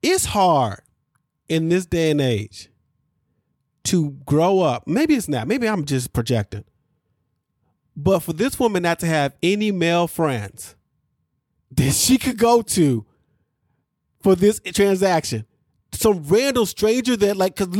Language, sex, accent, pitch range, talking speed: English, male, American, 150-215 Hz, 140 wpm